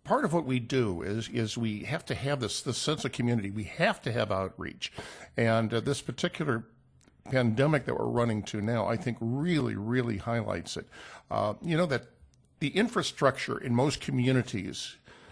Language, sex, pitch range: English, male, 115-145 Hz